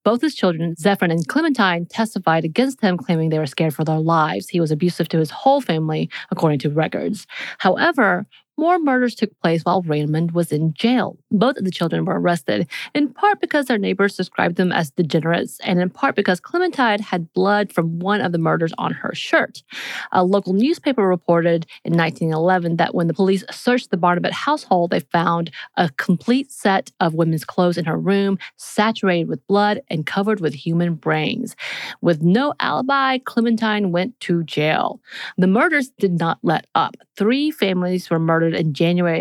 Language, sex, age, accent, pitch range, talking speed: English, female, 30-49, American, 165-215 Hz, 180 wpm